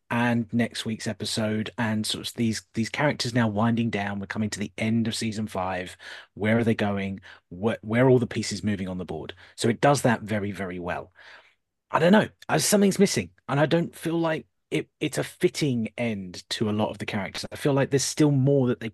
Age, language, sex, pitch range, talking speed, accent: 30-49, English, male, 110-140 Hz, 230 wpm, British